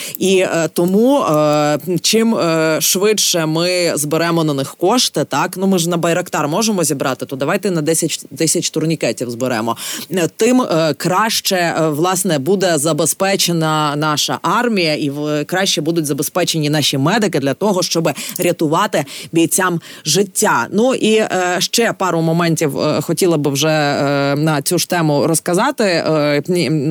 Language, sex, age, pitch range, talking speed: Ukrainian, female, 20-39, 150-190 Hz, 125 wpm